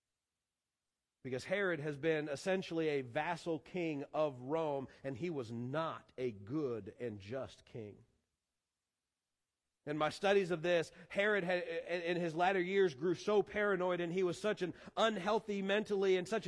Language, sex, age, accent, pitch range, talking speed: English, male, 40-59, American, 120-185 Hz, 150 wpm